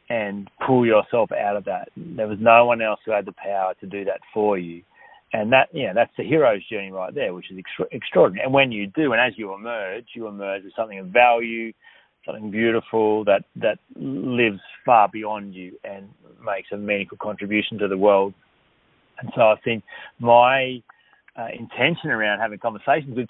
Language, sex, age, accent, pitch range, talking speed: English, male, 30-49, Australian, 105-120 Hz, 190 wpm